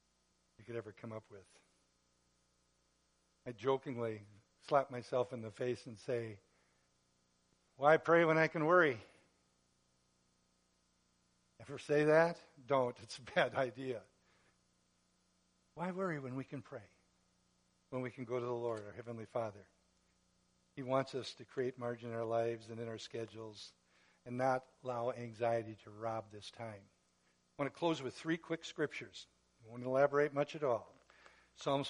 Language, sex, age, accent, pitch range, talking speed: English, male, 60-79, American, 100-145 Hz, 150 wpm